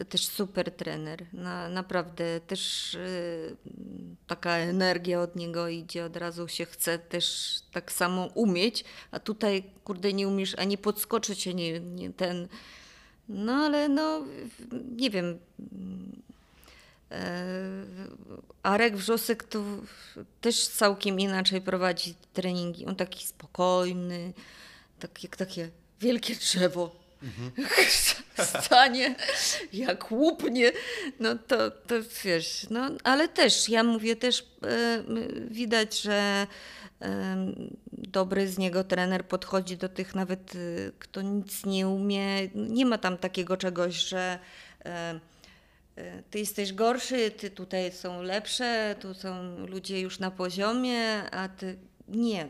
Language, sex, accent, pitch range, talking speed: Polish, female, native, 180-225 Hz, 115 wpm